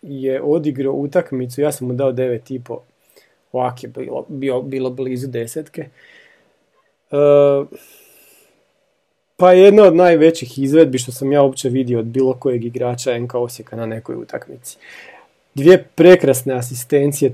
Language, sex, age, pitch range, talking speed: Croatian, male, 40-59, 130-150 Hz, 130 wpm